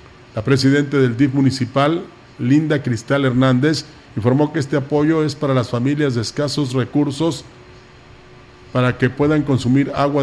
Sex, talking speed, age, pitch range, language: male, 140 wpm, 40-59, 125-150 Hz, Spanish